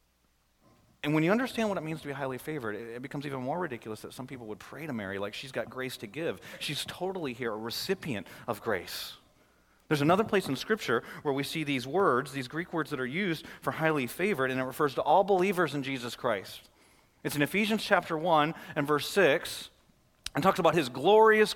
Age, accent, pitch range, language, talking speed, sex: 30-49, American, 130-185 Hz, English, 215 wpm, male